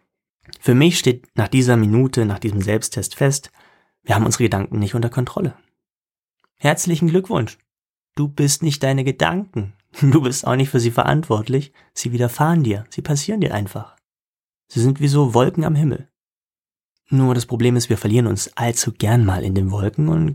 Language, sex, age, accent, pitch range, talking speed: German, male, 30-49, German, 105-140 Hz, 175 wpm